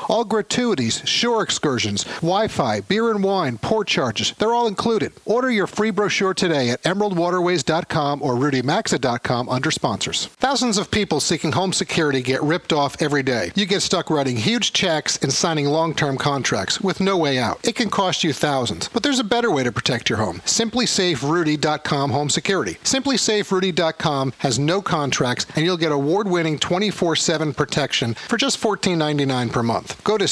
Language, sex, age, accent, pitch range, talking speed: English, male, 50-69, American, 140-205 Hz, 165 wpm